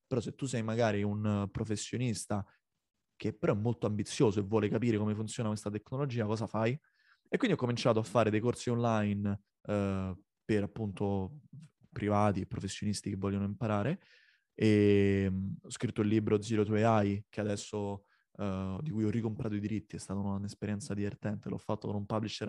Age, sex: 20-39, male